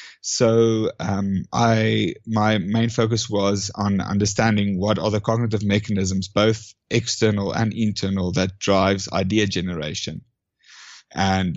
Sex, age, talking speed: male, 30-49, 120 wpm